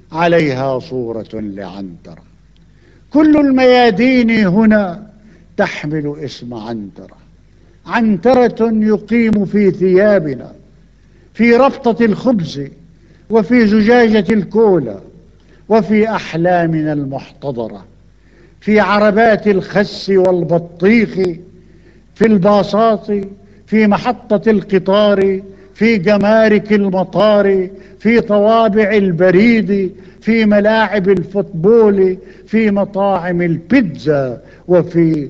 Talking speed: 75 wpm